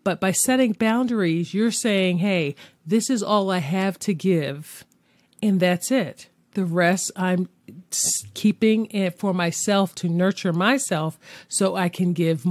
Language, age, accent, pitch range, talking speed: English, 40-59, American, 155-190 Hz, 150 wpm